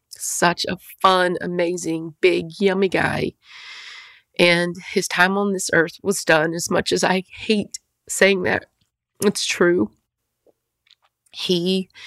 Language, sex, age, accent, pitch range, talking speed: English, female, 40-59, American, 145-180 Hz, 125 wpm